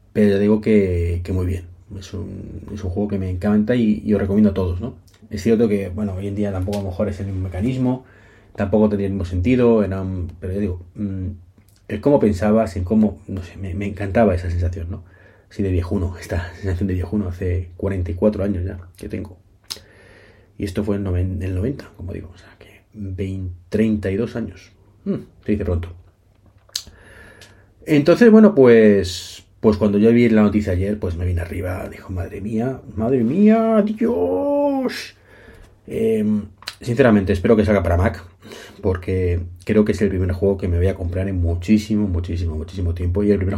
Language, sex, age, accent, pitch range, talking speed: Spanish, male, 30-49, Spanish, 95-105 Hz, 190 wpm